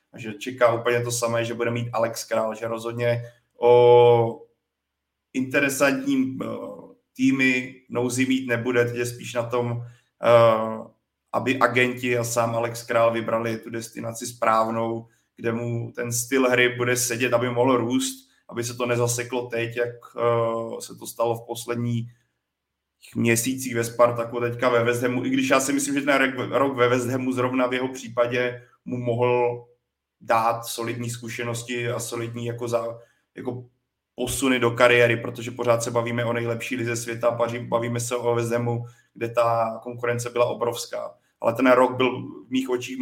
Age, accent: 30-49, native